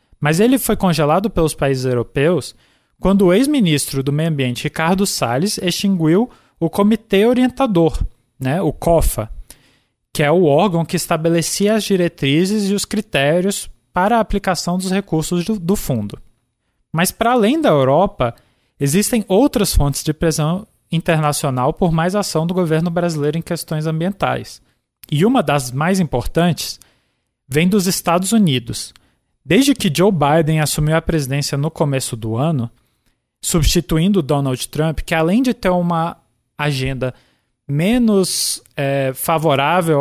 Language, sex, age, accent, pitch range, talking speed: Portuguese, male, 20-39, Brazilian, 140-195 Hz, 140 wpm